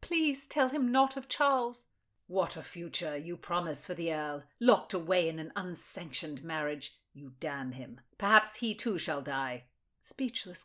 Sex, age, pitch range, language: female, 50-69, 165-245 Hz, English